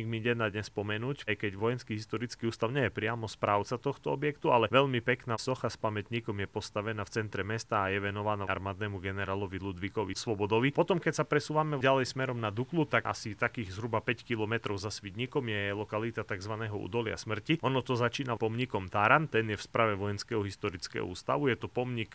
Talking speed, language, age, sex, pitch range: 185 wpm, Slovak, 30-49, male, 105-120 Hz